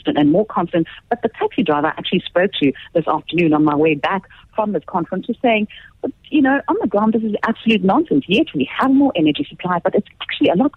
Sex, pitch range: female, 155-240 Hz